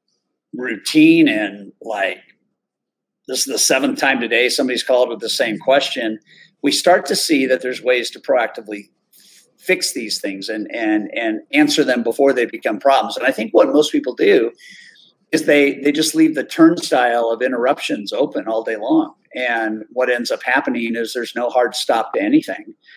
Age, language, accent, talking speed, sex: 50-69, English, American, 180 wpm, male